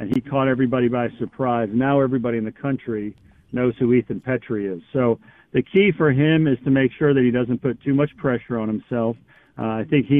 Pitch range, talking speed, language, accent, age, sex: 120-140 Hz, 225 wpm, English, American, 50-69, male